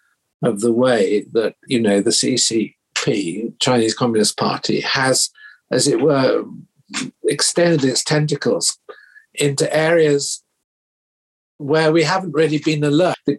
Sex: male